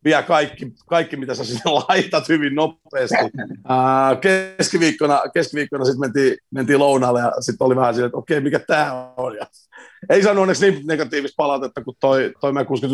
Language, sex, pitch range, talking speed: Finnish, male, 130-155 Hz, 170 wpm